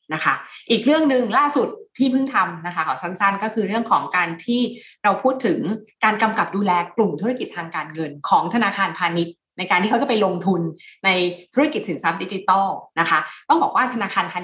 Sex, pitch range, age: female, 175-225 Hz, 20-39